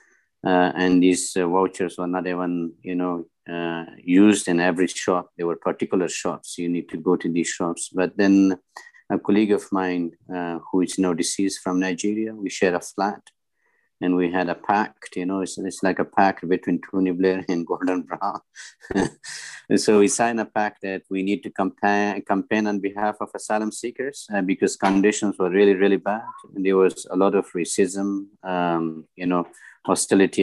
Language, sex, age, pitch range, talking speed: English, male, 50-69, 90-100 Hz, 185 wpm